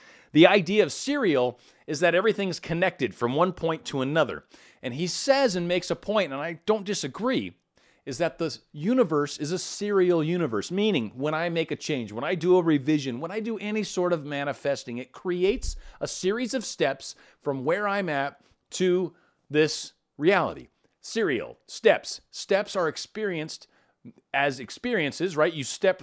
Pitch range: 140-185 Hz